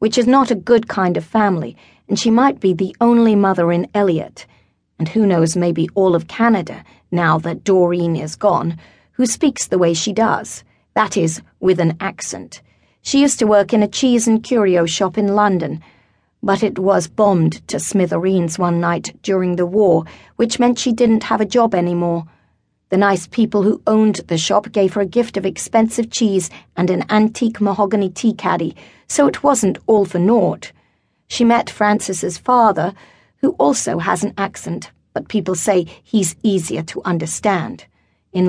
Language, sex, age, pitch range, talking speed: English, female, 30-49, 180-225 Hz, 180 wpm